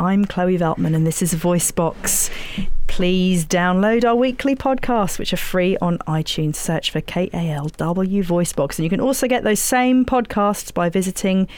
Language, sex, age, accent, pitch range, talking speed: English, female, 40-59, British, 165-205 Hz, 160 wpm